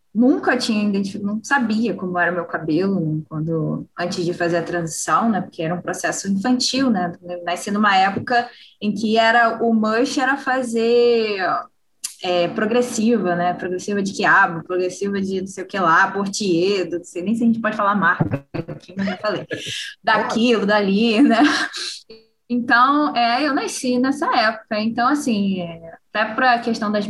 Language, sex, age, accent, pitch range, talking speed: Portuguese, female, 10-29, Brazilian, 180-245 Hz, 170 wpm